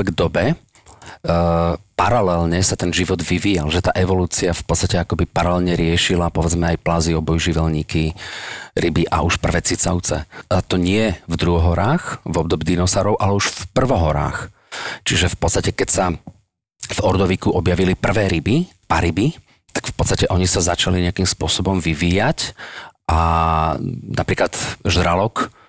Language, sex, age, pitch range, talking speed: Slovak, male, 40-59, 85-95 Hz, 145 wpm